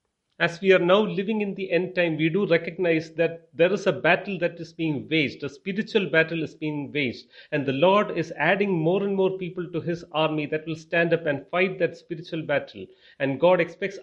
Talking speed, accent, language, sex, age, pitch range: 220 wpm, Indian, English, male, 30-49, 155-185 Hz